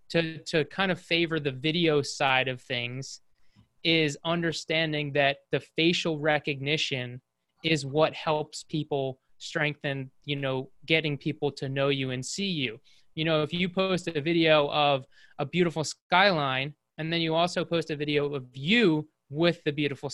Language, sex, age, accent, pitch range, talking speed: English, male, 20-39, American, 140-165 Hz, 160 wpm